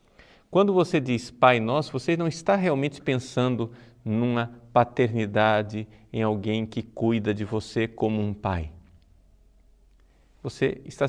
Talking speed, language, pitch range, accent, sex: 125 wpm, Portuguese, 105-135 Hz, Brazilian, male